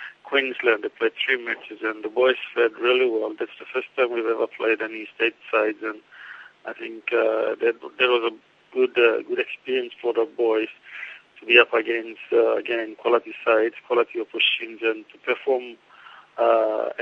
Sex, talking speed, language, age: male, 175 wpm, English, 50-69